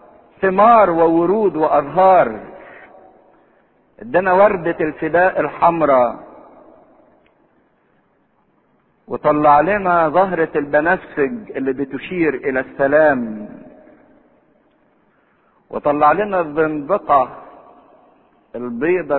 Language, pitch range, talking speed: English, 140-195 Hz, 60 wpm